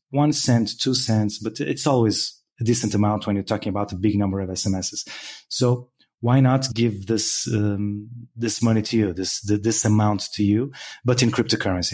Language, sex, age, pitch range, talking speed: English, male, 30-49, 100-120 Hz, 190 wpm